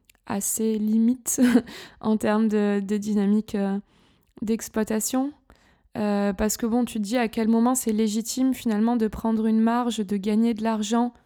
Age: 20-39